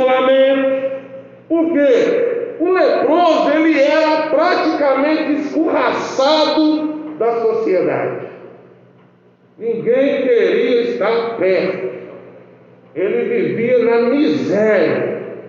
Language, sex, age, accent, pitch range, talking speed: Portuguese, male, 40-59, Brazilian, 265-440 Hz, 70 wpm